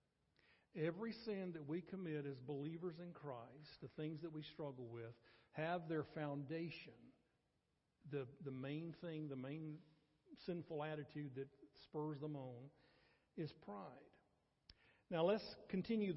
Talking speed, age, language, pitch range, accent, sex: 130 wpm, 50-69, English, 145-175 Hz, American, male